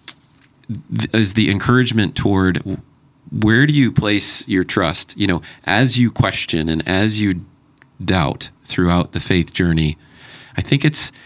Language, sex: English, male